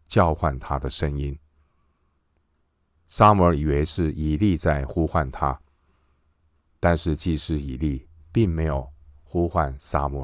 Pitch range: 75-85 Hz